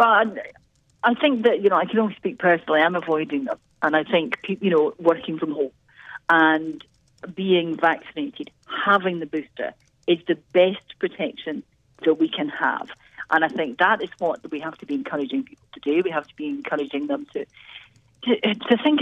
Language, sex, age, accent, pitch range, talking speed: English, female, 40-59, British, 150-255 Hz, 190 wpm